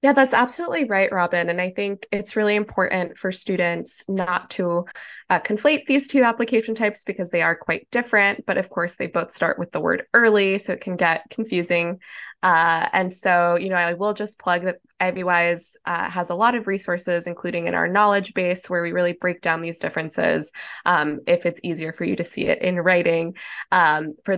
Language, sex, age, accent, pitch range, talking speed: English, female, 20-39, American, 175-220 Hz, 205 wpm